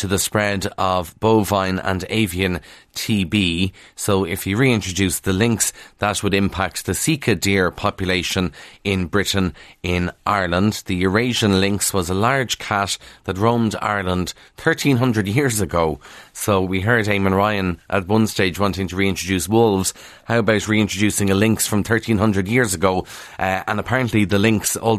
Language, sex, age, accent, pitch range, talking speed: English, male, 30-49, Irish, 95-110 Hz, 160 wpm